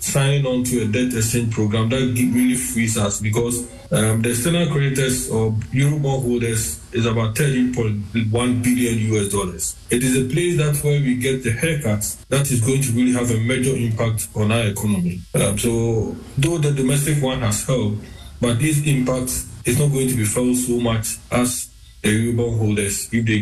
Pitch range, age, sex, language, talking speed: 95-120 Hz, 20-39, male, English, 185 wpm